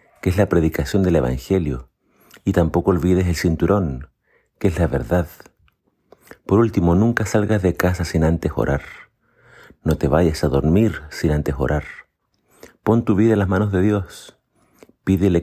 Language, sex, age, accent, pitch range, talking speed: Spanish, male, 50-69, Argentinian, 75-95 Hz, 160 wpm